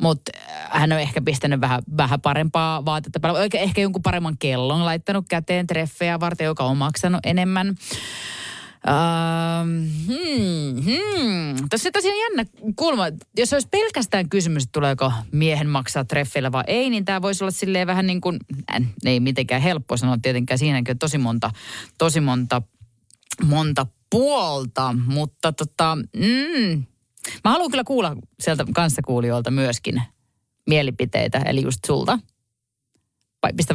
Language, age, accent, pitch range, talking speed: Finnish, 30-49, native, 125-175 Hz, 140 wpm